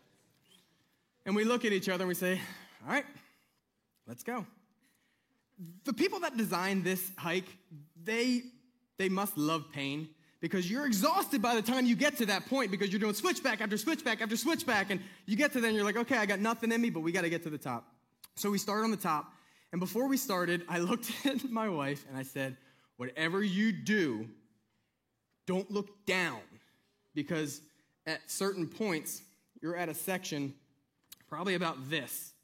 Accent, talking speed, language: American, 185 wpm, English